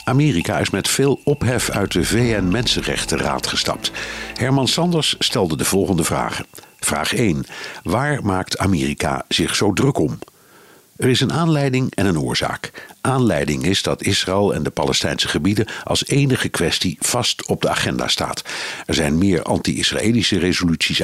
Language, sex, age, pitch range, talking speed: Dutch, male, 50-69, 85-120 Hz, 150 wpm